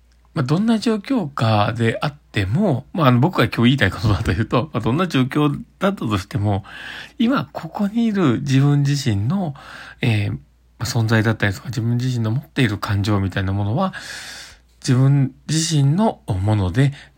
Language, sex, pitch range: Japanese, male, 105-135 Hz